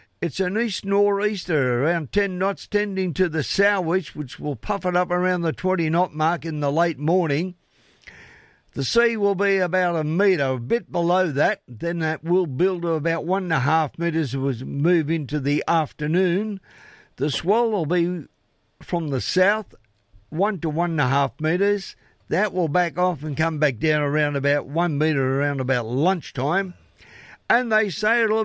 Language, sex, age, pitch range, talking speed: English, male, 60-79, 150-200 Hz, 180 wpm